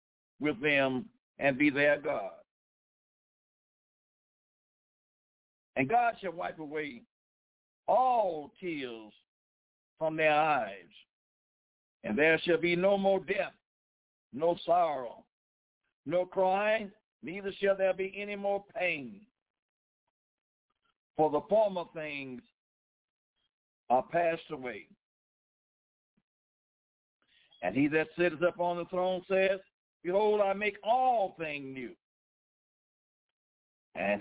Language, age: English, 60-79